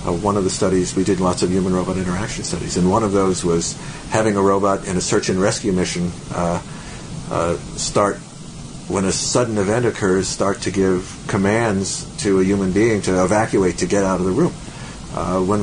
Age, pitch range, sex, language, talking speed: 50-69, 95-125 Hz, male, English, 205 wpm